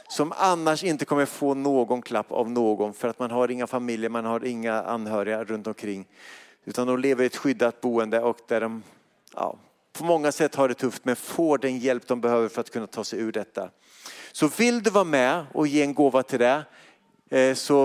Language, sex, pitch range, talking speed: Swedish, male, 115-145 Hz, 210 wpm